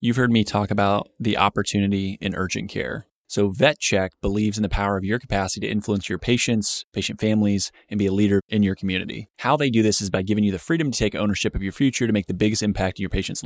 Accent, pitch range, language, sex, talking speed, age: American, 100-120 Hz, English, male, 250 wpm, 20-39